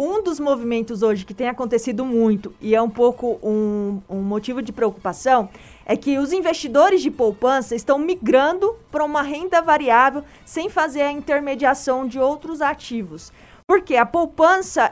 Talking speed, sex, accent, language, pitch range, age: 155 wpm, female, Brazilian, Portuguese, 255-345 Hz, 20-39